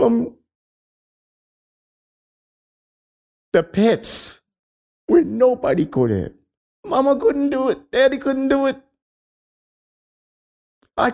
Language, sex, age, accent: English, male, 50-69, American